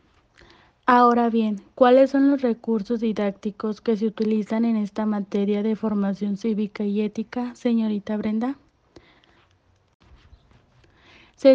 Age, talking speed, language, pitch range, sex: 30-49, 110 wpm, Spanish, 205-225 Hz, female